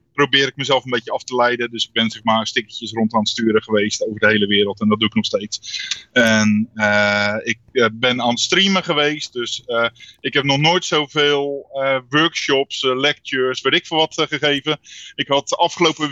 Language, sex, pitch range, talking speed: Dutch, male, 125-160 Hz, 215 wpm